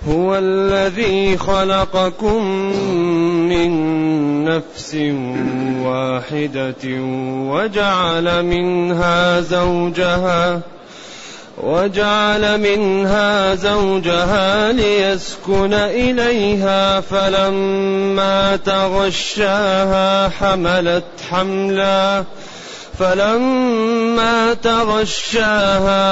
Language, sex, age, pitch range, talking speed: Arabic, male, 30-49, 150-195 Hz, 40 wpm